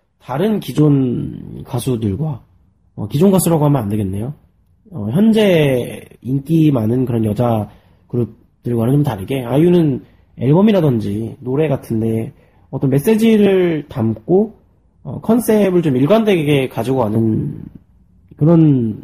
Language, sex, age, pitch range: Korean, male, 30-49, 100-155 Hz